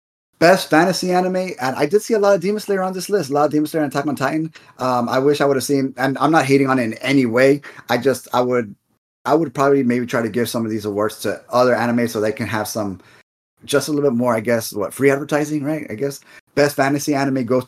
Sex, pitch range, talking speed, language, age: male, 115-140 Hz, 270 wpm, English, 20-39